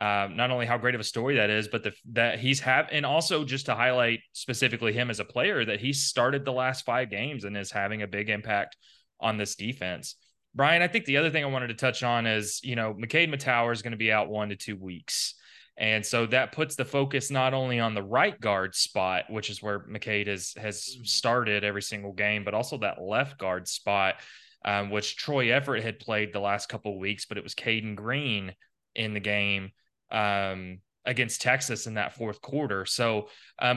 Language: English